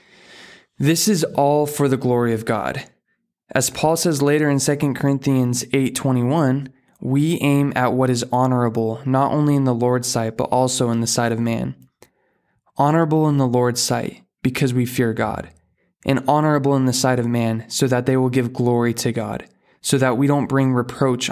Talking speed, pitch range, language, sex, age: 185 wpm, 120-140 Hz, English, male, 20-39